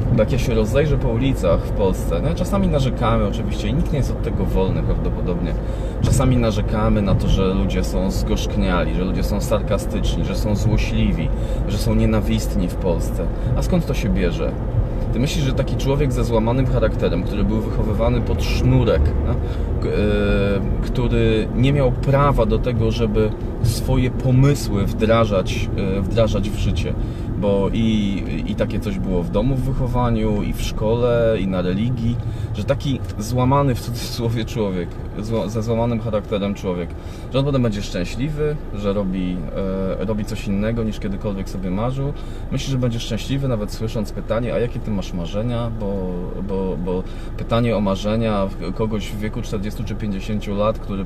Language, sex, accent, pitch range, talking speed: Polish, male, native, 100-115 Hz, 165 wpm